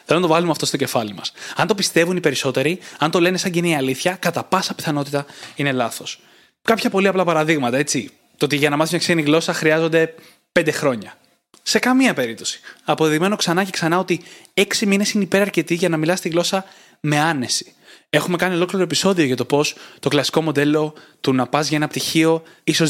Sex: male